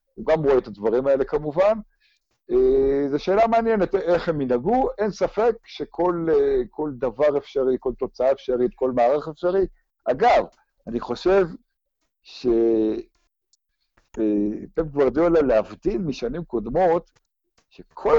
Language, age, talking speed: Hebrew, 60-79, 120 wpm